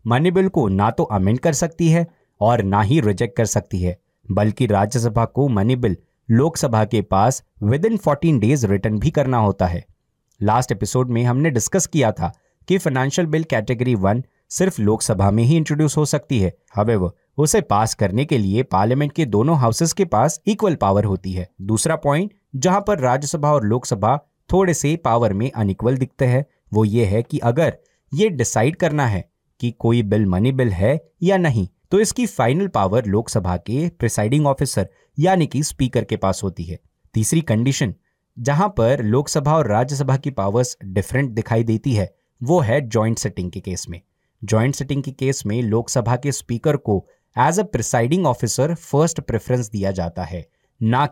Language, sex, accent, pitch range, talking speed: Hindi, male, native, 105-150 Hz, 170 wpm